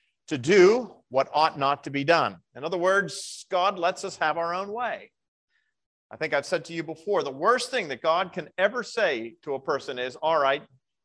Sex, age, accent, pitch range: male, 40-59, American, 140-190 Hz